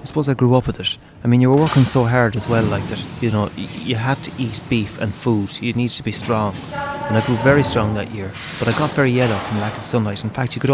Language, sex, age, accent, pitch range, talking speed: English, male, 30-49, Irish, 105-125 Hz, 290 wpm